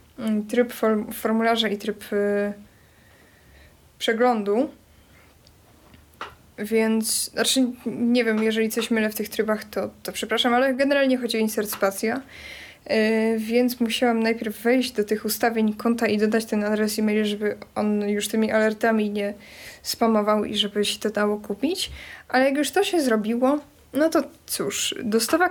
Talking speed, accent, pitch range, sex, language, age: 145 wpm, native, 215-245 Hz, female, Polish, 20-39